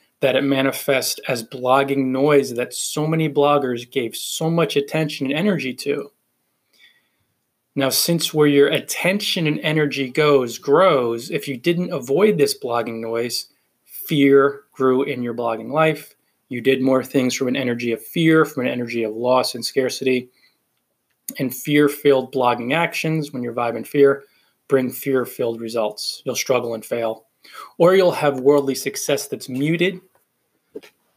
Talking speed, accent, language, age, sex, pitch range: 150 wpm, American, English, 20-39, male, 120-145 Hz